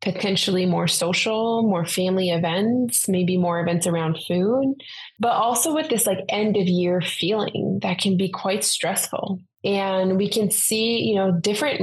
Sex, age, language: female, 20-39, English